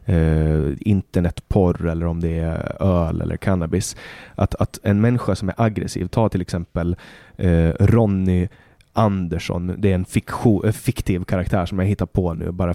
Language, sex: Swedish, male